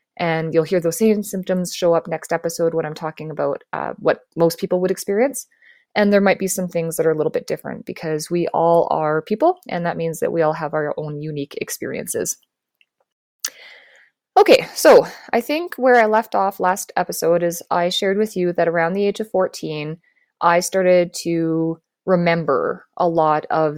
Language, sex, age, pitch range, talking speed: English, female, 20-39, 160-195 Hz, 190 wpm